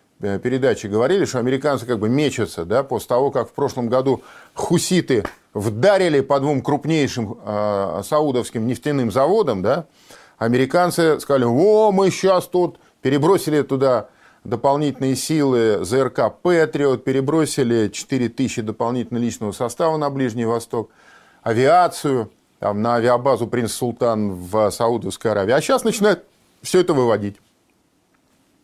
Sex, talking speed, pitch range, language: male, 115 wpm, 120-170 Hz, Russian